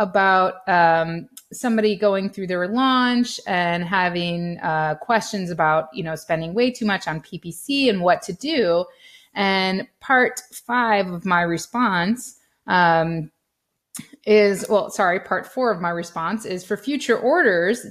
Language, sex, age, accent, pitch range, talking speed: English, female, 30-49, American, 175-235 Hz, 145 wpm